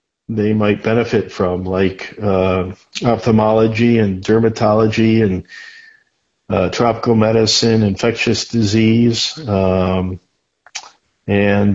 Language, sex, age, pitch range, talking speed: English, male, 50-69, 105-120 Hz, 85 wpm